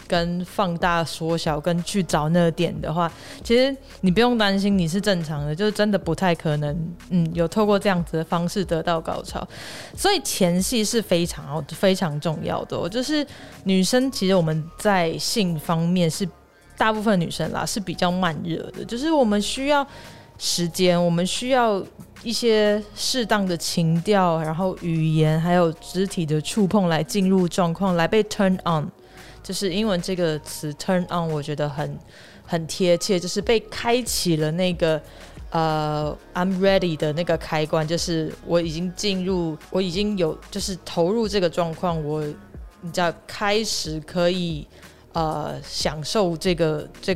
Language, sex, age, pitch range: Chinese, female, 20-39, 165-200 Hz